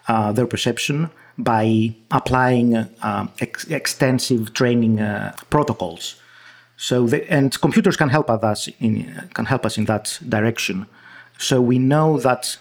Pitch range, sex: 115-140 Hz, male